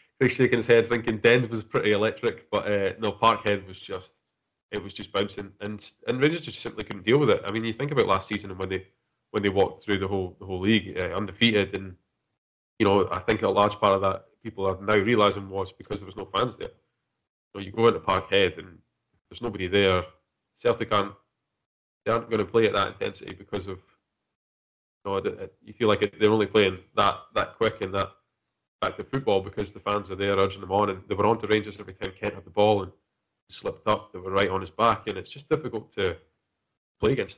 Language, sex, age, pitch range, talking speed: English, male, 20-39, 95-105 Hz, 230 wpm